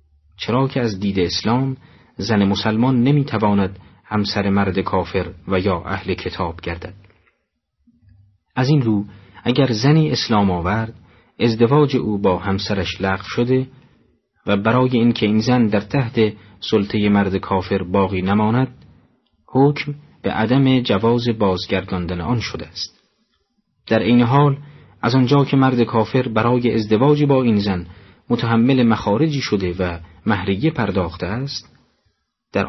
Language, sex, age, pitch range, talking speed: Persian, male, 40-59, 95-125 Hz, 130 wpm